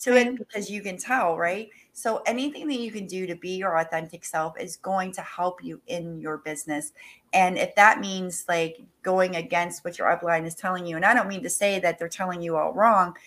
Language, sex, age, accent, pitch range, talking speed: English, female, 40-59, American, 165-195 Hz, 225 wpm